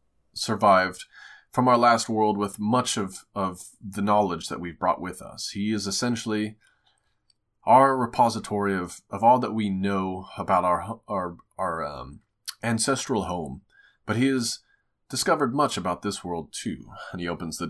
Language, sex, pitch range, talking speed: English, male, 90-115 Hz, 160 wpm